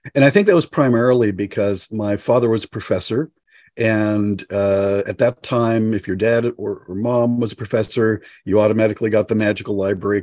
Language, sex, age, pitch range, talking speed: English, male, 40-59, 100-115 Hz, 190 wpm